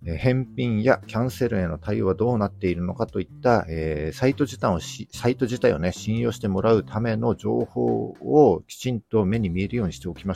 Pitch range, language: 90-120 Hz, Japanese